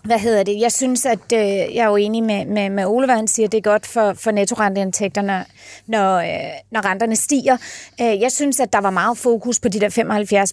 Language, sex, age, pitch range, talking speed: Danish, female, 30-49, 210-250 Hz, 235 wpm